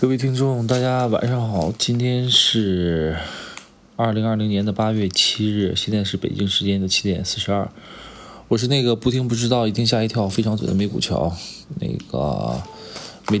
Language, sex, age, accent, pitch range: Chinese, male, 20-39, native, 90-110 Hz